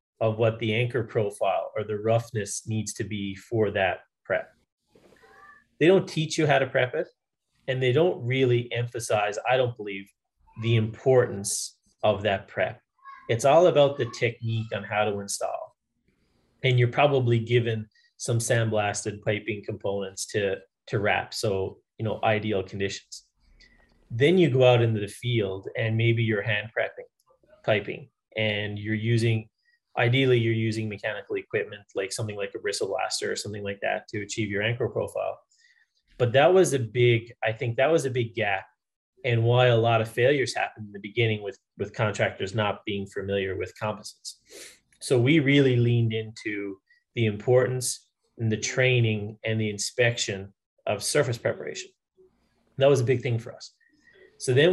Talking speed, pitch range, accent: 165 wpm, 105-130 Hz, American